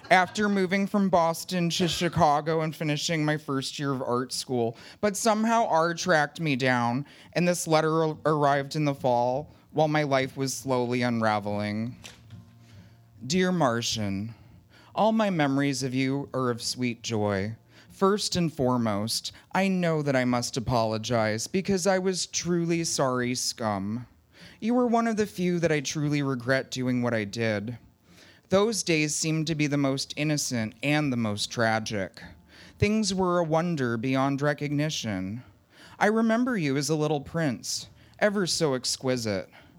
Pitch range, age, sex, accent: 115-165 Hz, 30-49, male, American